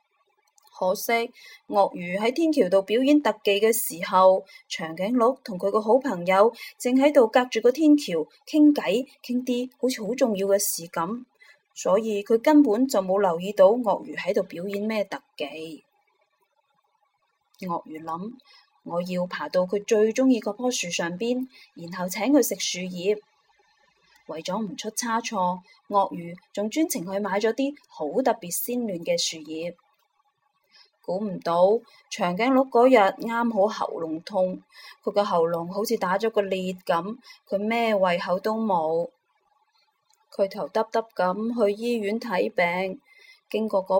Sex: female